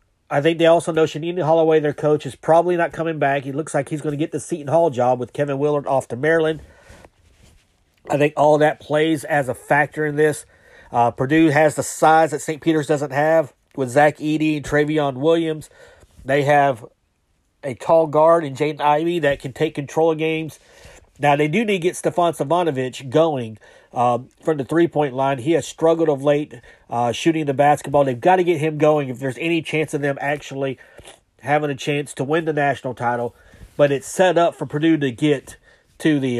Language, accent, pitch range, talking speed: English, American, 135-160 Hz, 205 wpm